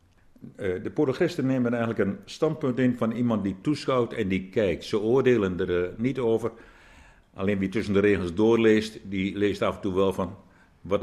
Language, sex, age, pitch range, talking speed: Dutch, male, 60-79, 95-130 Hz, 190 wpm